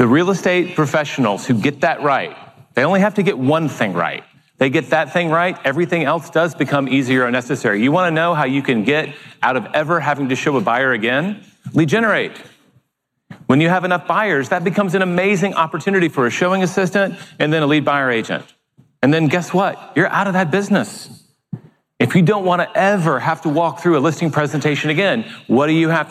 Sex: male